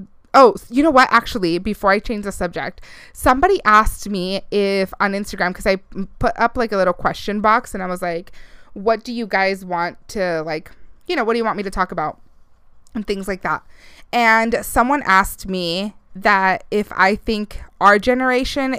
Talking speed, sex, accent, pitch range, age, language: 190 wpm, female, American, 195-275 Hz, 20-39, English